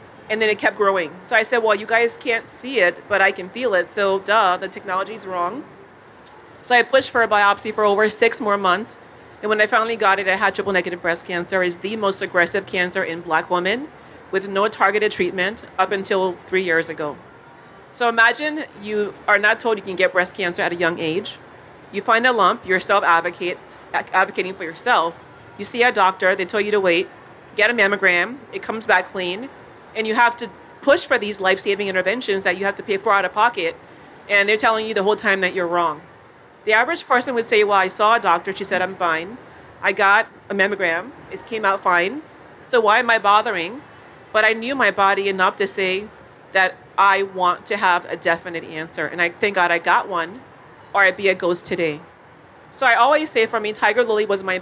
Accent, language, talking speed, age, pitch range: American, English, 215 wpm, 40-59, 180-220 Hz